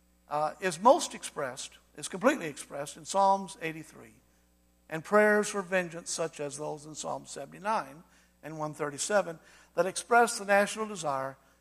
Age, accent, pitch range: 60-79, American, 120-185 Hz